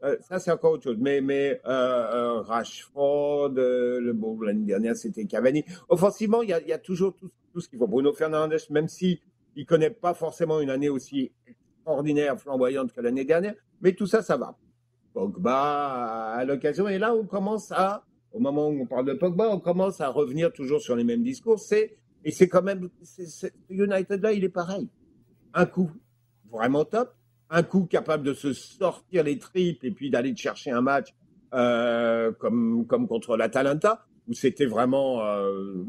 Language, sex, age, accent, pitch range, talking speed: French, male, 50-69, French, 130-195 Hz, 190 wpm